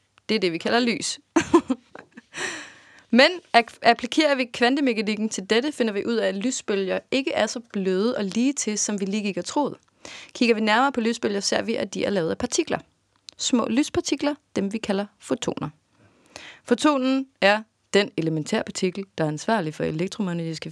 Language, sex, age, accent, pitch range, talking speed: Danish, female, 30-49, native, 185-245 Hz, 175 wpm